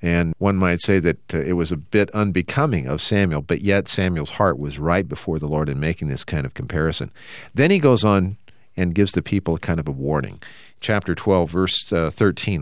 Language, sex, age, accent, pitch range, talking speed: English, male, 50-69, American, 80-115 Hz, 215 wpm